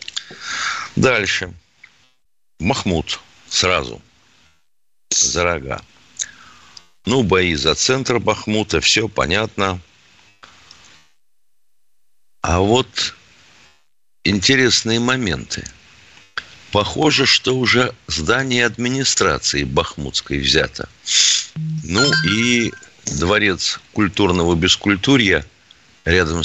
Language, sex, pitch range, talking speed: Russian, male, 75-110 Hz, 65 wpm